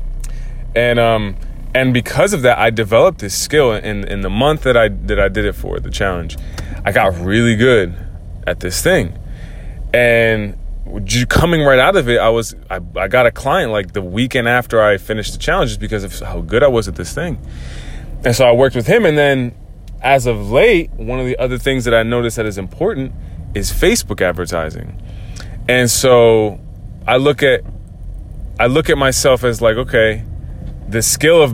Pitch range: 95-125 Hz